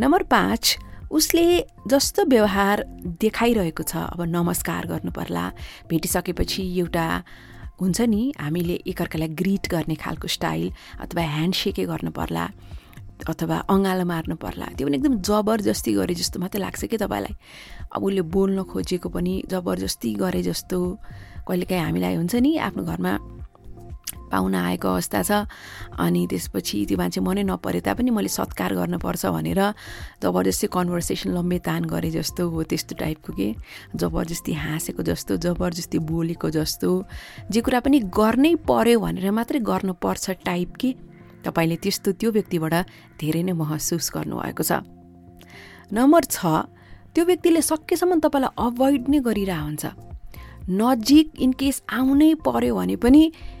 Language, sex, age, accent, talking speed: English, female, 30-49, Indian, 75 wpm